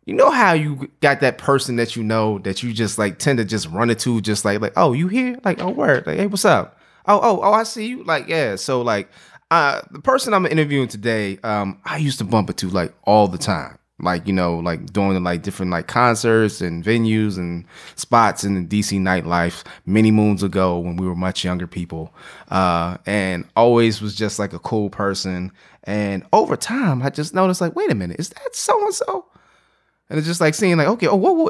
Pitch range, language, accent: 100-150 Hz, English, American